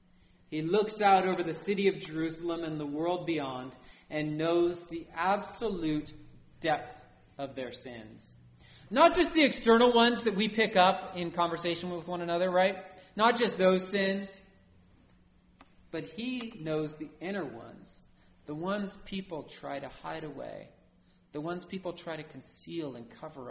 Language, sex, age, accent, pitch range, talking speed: English, male, 30-49, American, 130-195 Hz, 155 wpm